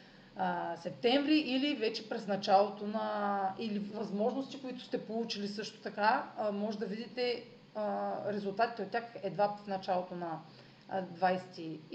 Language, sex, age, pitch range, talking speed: Bulgarian, female, 30-49, 200-250 Hz, 120 wpm